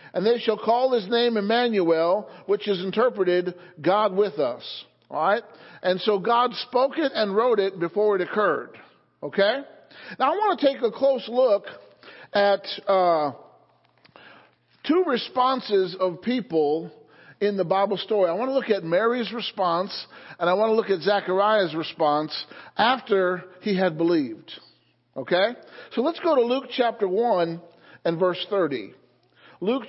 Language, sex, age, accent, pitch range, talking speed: English, male, 50-69, American, 185-240 Hz, 155 wpm